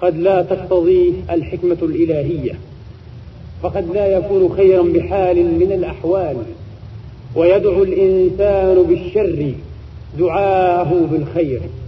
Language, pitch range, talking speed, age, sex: Arabic, 175-245 Hz, 85 wpm, 40-59, male